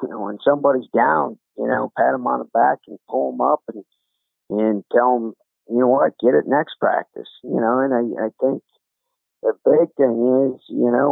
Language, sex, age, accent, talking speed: English, male, 50-69, American, 210 wpm